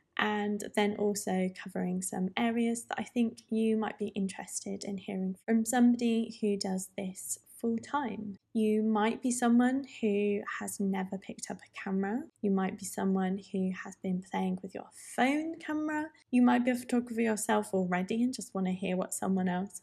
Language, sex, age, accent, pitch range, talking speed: English, female, 20-39, British, 195-235 Hz, 180 wpm